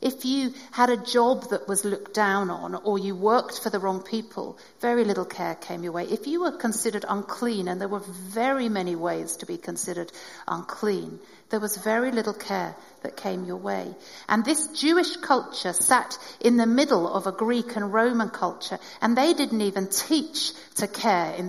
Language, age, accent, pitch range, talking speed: English, 50-69, British, 195-245 Hz, 195 wpm